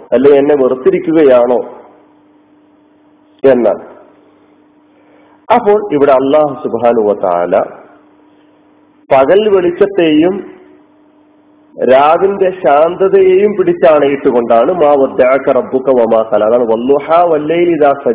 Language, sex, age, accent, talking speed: Malayalam, male, 40-59, native, 50 wpm